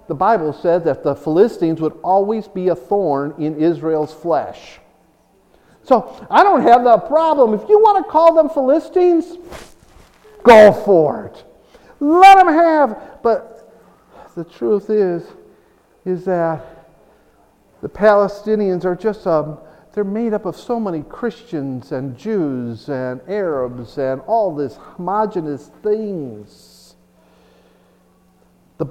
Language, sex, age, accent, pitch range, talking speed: English, male, 50-69, American, 140-205 Hz, 125 wpm